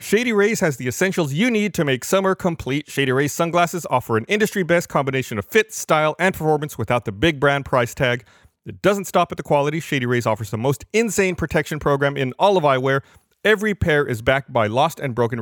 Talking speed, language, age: 215 wpm, English, 30-49